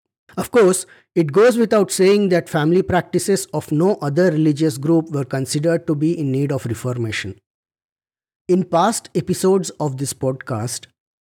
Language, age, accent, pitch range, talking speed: English, 50-69, Indian, 125-165 Hz, 150 wpm